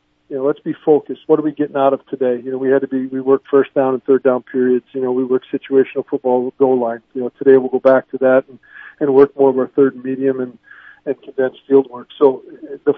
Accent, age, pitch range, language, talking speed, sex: American, 50-69, 130-145 Hz, English, 270 wpm, male